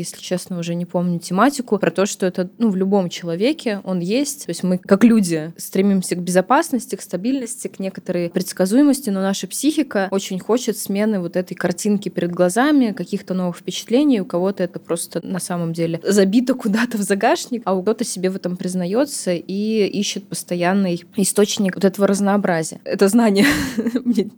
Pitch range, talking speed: 180-210 Hz, 175 wpm